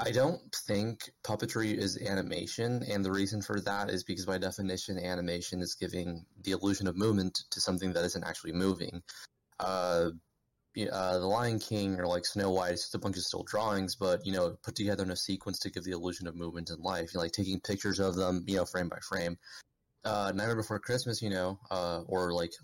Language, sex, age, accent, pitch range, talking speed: English, male, 20-39, American, 90-100 Hz, 220 wpm